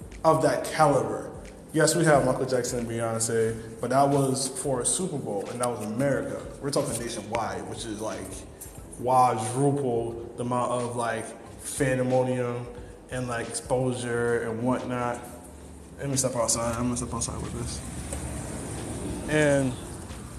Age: 20-39